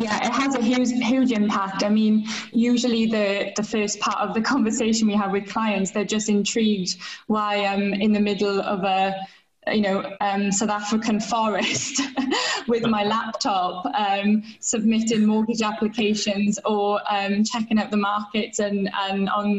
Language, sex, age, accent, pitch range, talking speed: English, female, 10-29, British, 200-225 Hz, 160 wpm